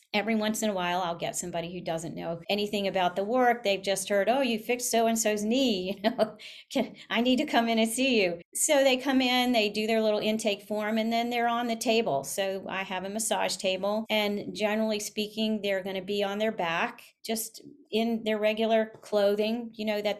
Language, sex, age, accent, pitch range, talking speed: English, female, 40-59, American, 190-230 Hz, 220 wpm